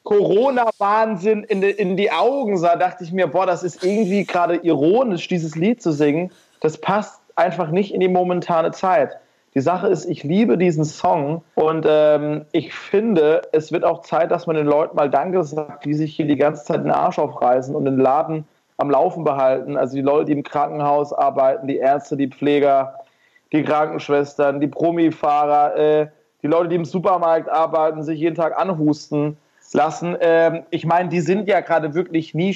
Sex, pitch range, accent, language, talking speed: male, 150-180 Hz, German, German, 180 wpm